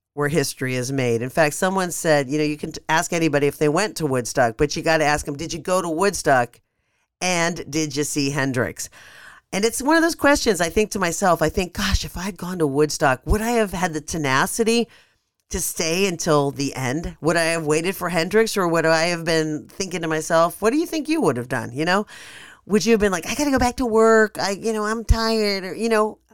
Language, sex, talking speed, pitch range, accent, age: English, female, 250 wpm, 150-195 Hz, American, 40-59